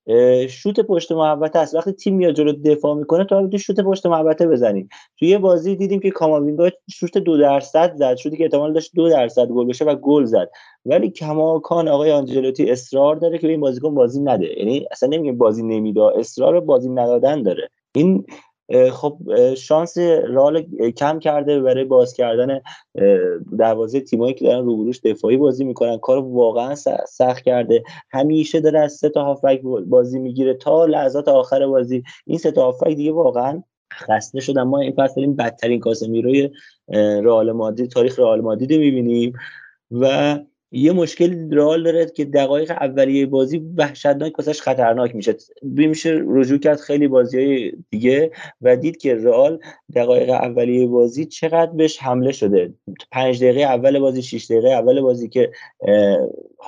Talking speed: 155 wpm